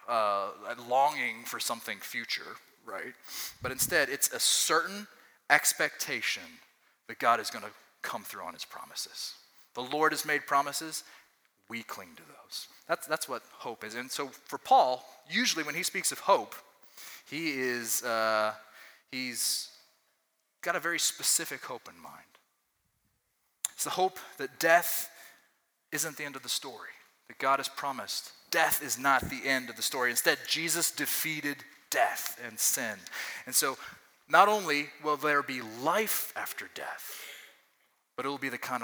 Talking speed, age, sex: 160 wpm, 30-49, male